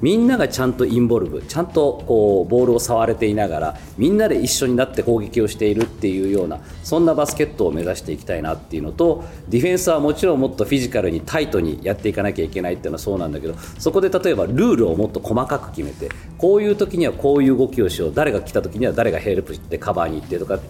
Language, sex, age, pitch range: Japanese, male, 40-59, 105-160 Hz